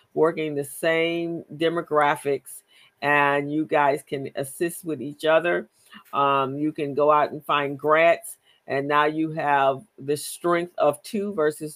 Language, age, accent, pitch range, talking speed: English, 50-69, American, 145-170 Hz, 150 wpm